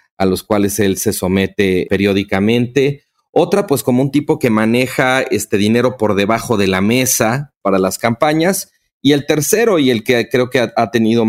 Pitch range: 105-130 Hz